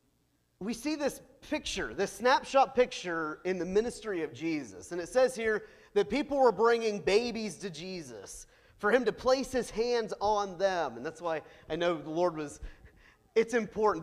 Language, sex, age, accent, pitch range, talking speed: English, male, 30-49, American, 180-280 Hz, 175 wpm